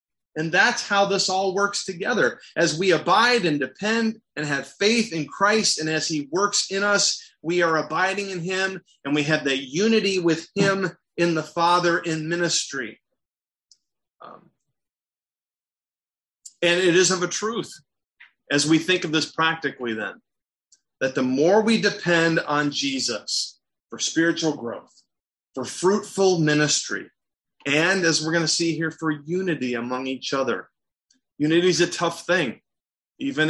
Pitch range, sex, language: 145-185 Hz, male, English